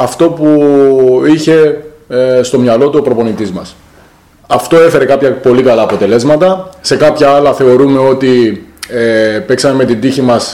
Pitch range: 125-155 Hz